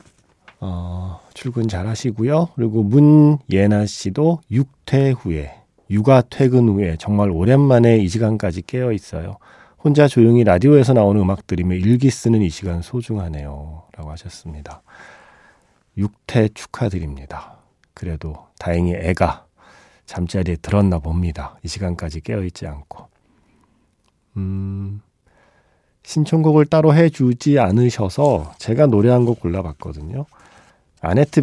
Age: 40-59